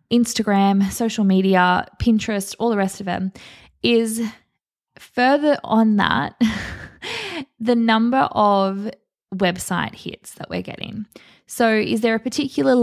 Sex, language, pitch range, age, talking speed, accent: female, English, 190-235 Hz, 20-39, 120 wpm, Australian